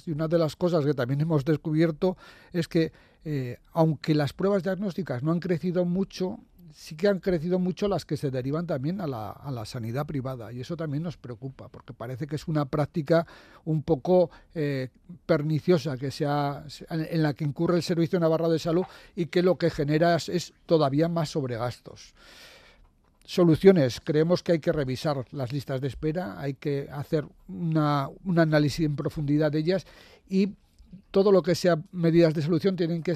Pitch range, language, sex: 145-175 Hz, Spanish, male